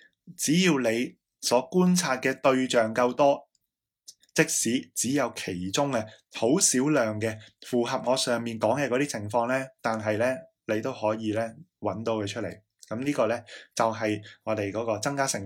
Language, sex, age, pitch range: Chinese, male, 20-39, 110-135 Hz